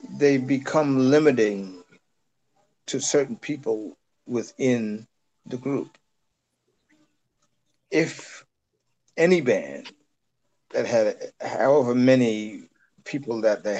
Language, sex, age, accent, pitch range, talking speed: English, male, 50-69, American, 120-170 Hz, 85 wpm